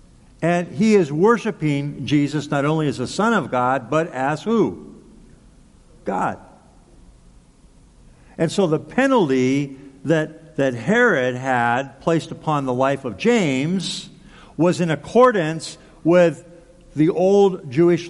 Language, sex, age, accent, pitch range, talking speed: English, male, 50-69, American, 130-185 Hz, 125 wpm